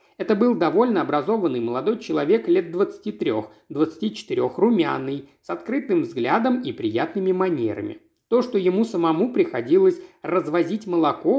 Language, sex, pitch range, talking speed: Russian, male, 155-250 Hz, 120 wpm